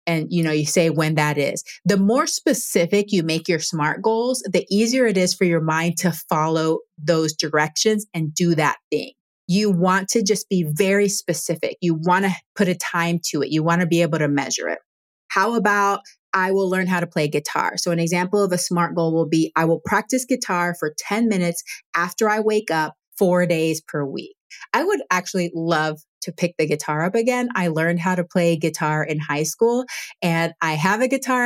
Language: English